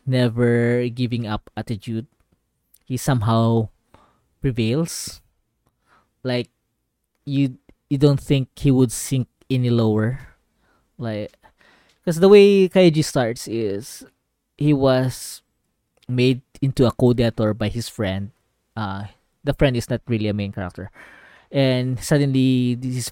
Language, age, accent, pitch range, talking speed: Filipino, 20-39, native, 110-135 Hz, 120 wpm